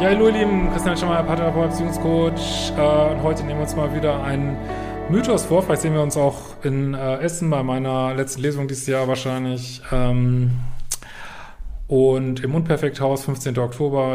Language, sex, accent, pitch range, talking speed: German, male, German, 135-155 Hz, 165 wpm